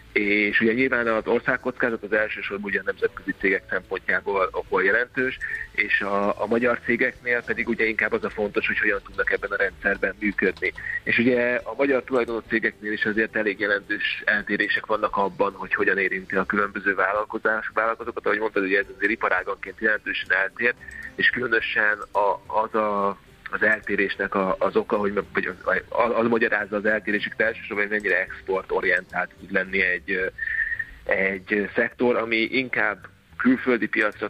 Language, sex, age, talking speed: Hungarian, male, 30-49, 160 wpm